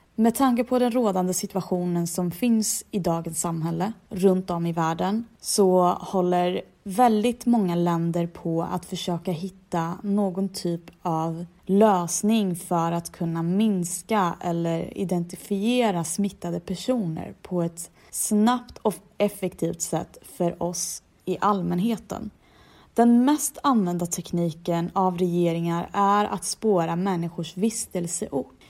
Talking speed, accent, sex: 120 wpm, native, female